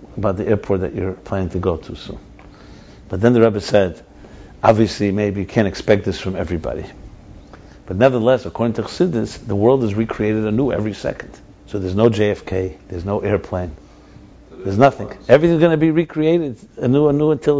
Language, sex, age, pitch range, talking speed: English, male, 60-79, 95-130 Hz, 175 wpm